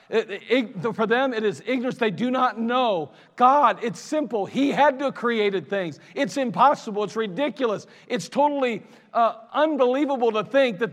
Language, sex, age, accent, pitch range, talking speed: English, male, 40-59, American, 185-245 Hz, 160 wpm